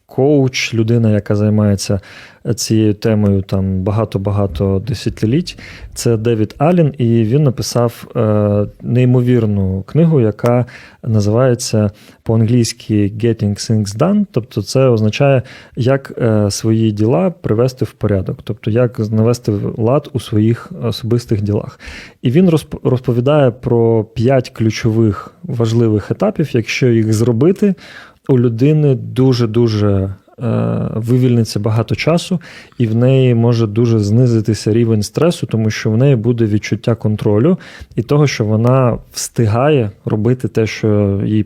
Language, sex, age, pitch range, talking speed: Ukrainian, male, 30-49, 105-125 Hz, 120 wpm